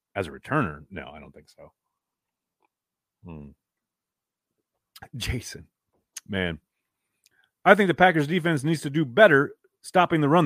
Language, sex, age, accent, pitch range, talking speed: English, male, 40-59, American, 105-170 Hz, 130 wpm